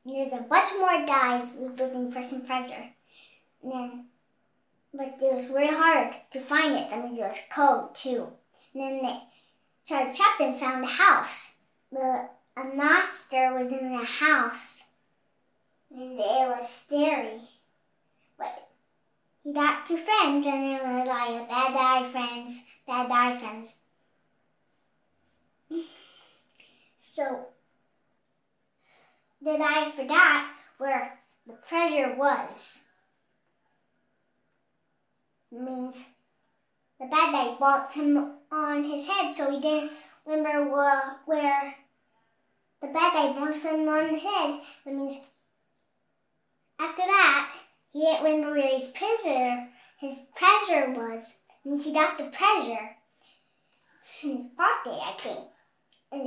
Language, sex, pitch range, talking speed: English, male, 255-305 Hz, 125 wpm